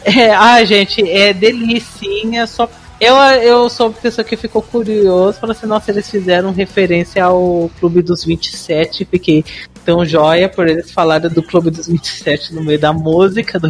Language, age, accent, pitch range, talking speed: Portuguese, 40-59, Brazilian, 180-245 Hz, 175 wpm